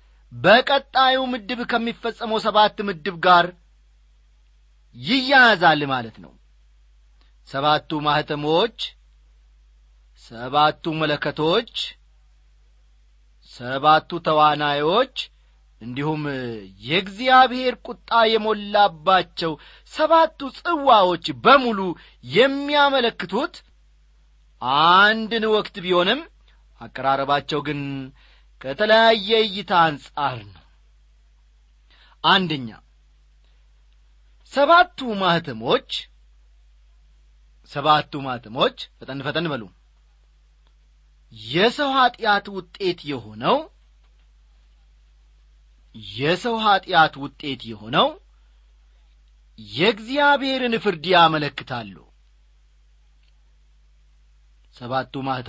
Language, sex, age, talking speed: English, male, 40-59, 45 wpm